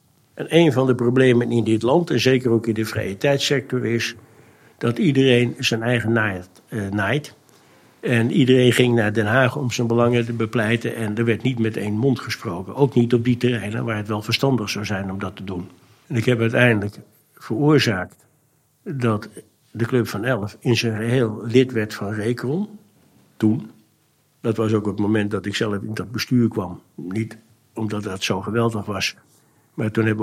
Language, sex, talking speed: Dutch, male, 190 wpm